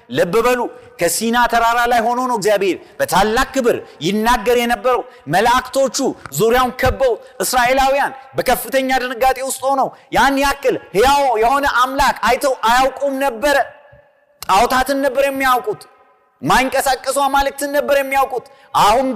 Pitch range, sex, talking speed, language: 205-280 Hz, male, 105 wpm, Amharic